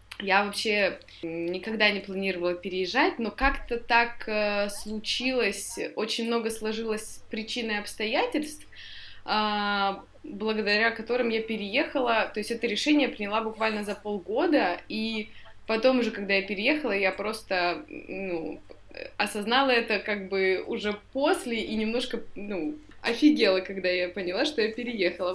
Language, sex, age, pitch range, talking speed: Russian, female, 20-39, 205-255 Hz, 130 wpm